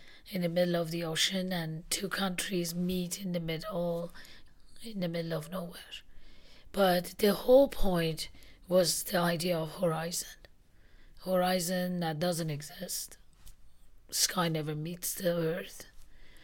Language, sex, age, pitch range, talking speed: English, female, 30-49, 160-185 Hz, 130 wpm